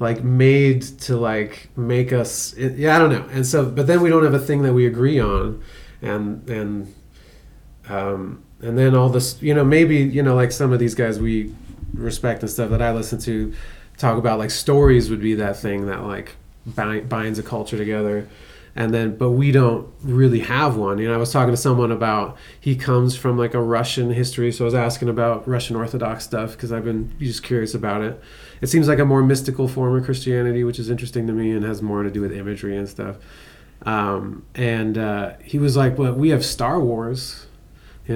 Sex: male